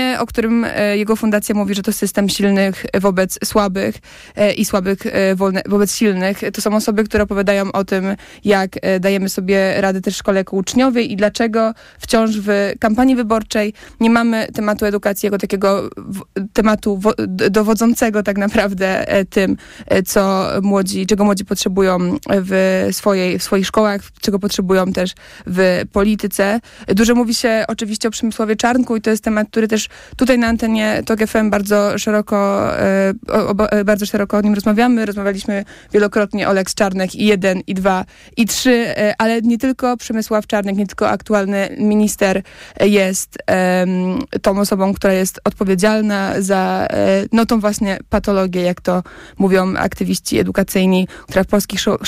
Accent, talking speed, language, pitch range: native, 150 wpm, Polish, 195-220 Hz